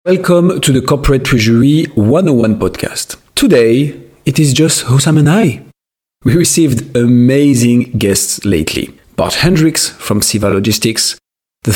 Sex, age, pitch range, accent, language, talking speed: male, 40-59, 110-155 Hz, French, English, 130 wpm